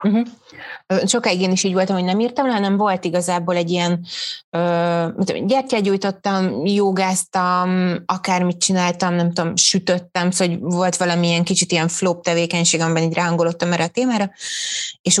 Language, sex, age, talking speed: Hungarian, female, 30-49, 155 wpm